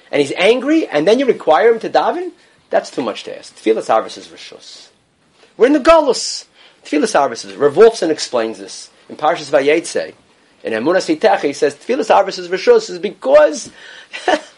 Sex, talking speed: male, 165 wpm